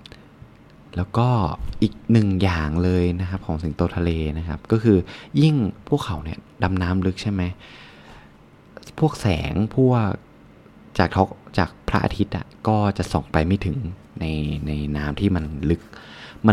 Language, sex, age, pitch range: Thai, male, 20-39, 80-105 Hz